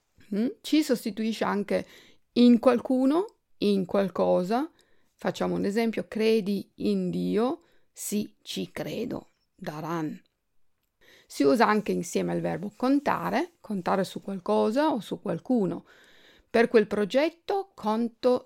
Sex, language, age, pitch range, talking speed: female, Italian, 50-69, 185-255 Hz, 110 wpm